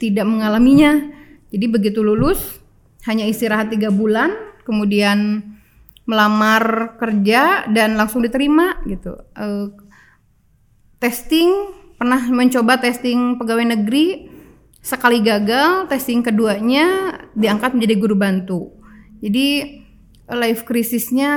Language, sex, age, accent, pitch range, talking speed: Indonesian, female, 20-39, native, 205-240 Hz, 95 wpm